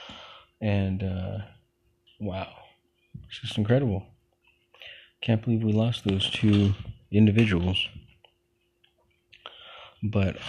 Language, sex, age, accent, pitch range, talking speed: English, male, 20-39, American, 95-120 Hz, 80 wpm